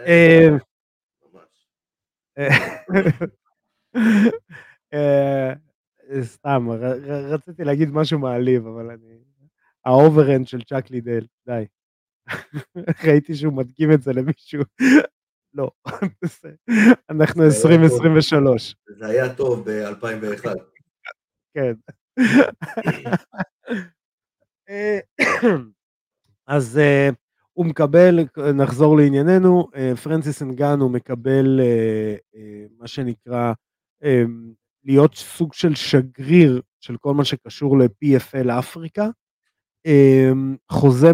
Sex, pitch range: male, 125-160 Hz